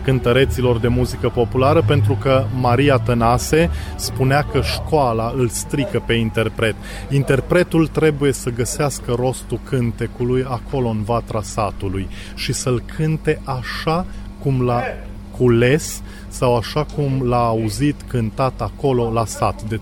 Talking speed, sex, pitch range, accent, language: 125 wpm, male, 105-135 Hz, native, Romanian